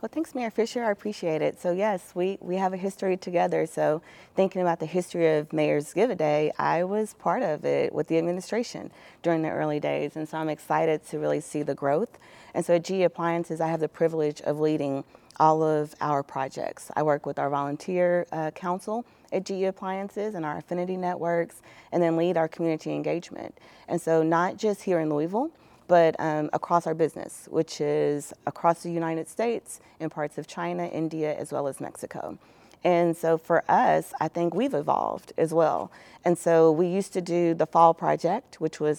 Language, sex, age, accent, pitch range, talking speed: English, female, 40-59, American, 155-180 Hz, 195 wpm